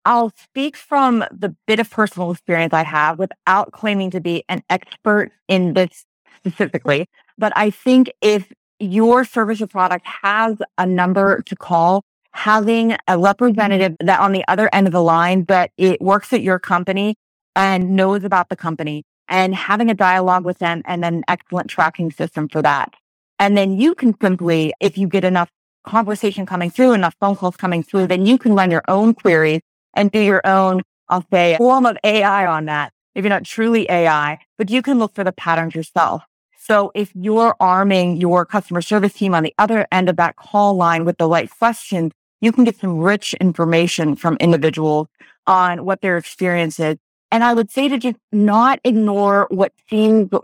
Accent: American